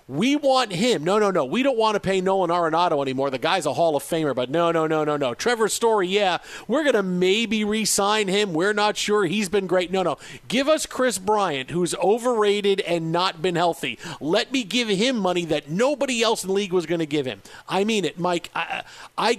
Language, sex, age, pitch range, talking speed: English, male, 40-59, 175-235 Hz, 230 wpm